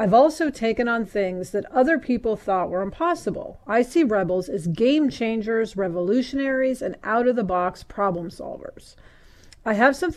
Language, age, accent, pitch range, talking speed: English, 40-59, American, 195-260 Hz, 150 wpm